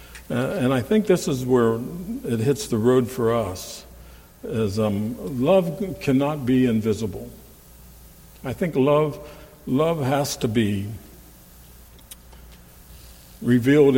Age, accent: 60-79, American